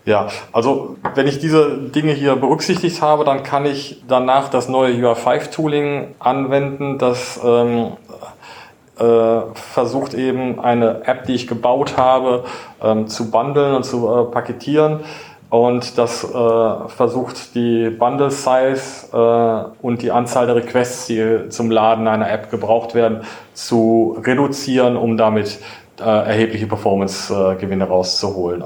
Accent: German